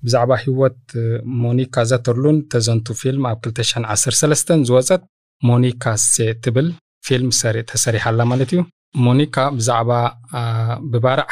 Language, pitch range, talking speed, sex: Amharic, 115-135 Hz, 90 wpm, male